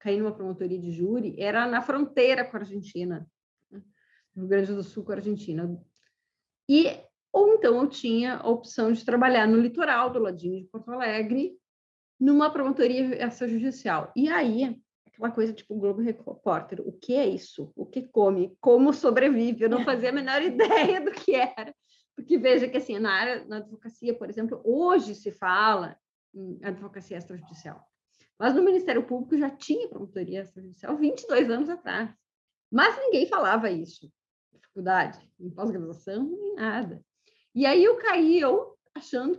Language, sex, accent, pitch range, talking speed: Portuguese, female, Brazilian, 200-295 Hz, 165 wpm